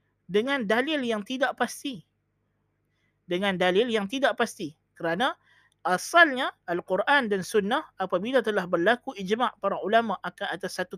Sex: male